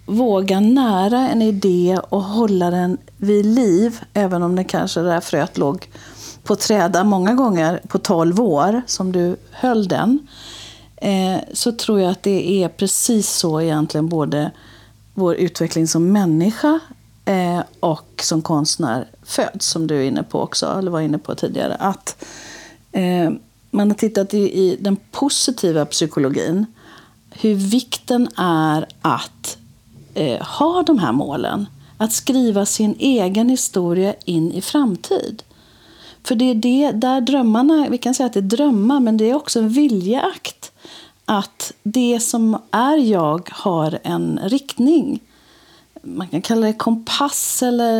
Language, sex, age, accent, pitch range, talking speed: Swedish, female, 50-69, native, 175-245 Hz, 150 wpm